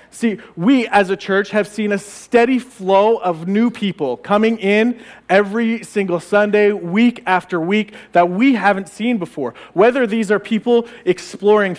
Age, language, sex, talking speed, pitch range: 40-59, English, male, 160 wpm, 175-220 Hz